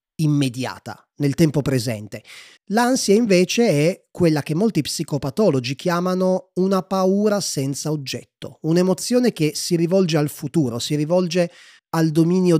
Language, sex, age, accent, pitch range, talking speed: Italian, male, 30-49, native, 125-165 Hz, 125 wpm